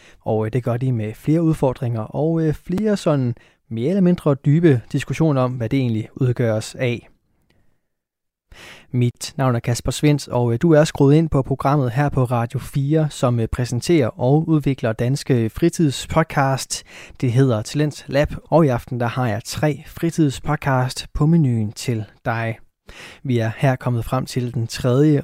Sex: male